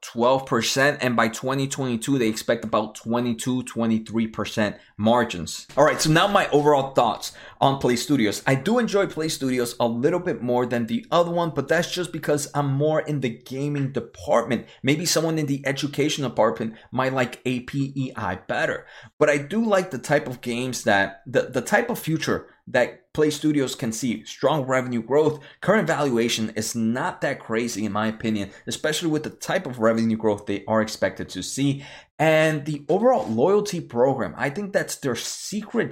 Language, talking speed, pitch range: English, 175 wpm, 120-155 Hz